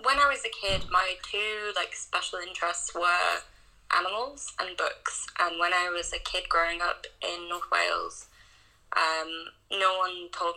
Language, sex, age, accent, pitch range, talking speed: English, female, 20-39, British, 165-200 Hz, 165 wpm